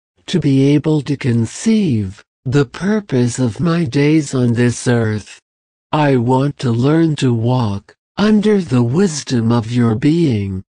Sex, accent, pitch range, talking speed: male, American, 110-155 Hz, 140 wpm